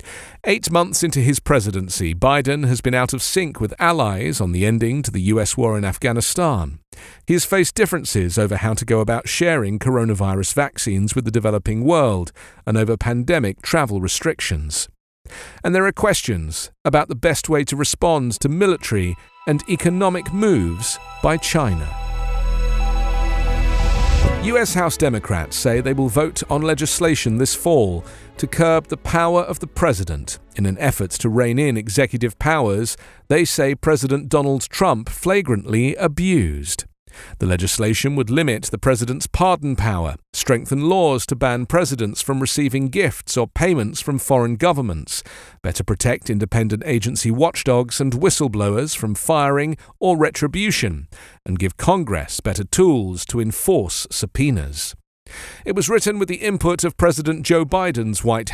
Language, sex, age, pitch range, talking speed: English, male, 50-69, 105-155 Hz, 150 wpm